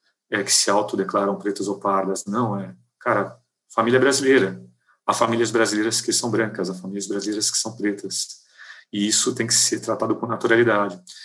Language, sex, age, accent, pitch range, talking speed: Portuguese, male, 40-59, Brazilian, 105-125 Hz, 170 wpm